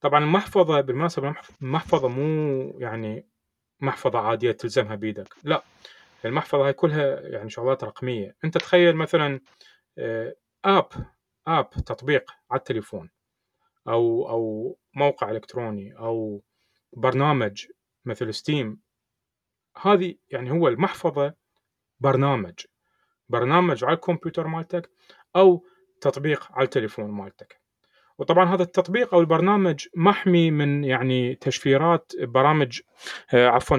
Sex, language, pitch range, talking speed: male, Arabic, 125-175 Hz, 100 wpm